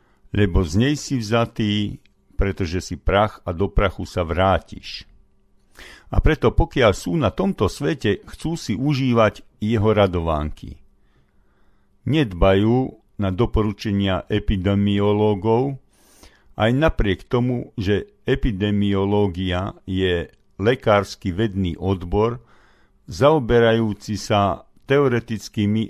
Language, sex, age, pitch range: Slovak, male, 50-69, 95-115 Hz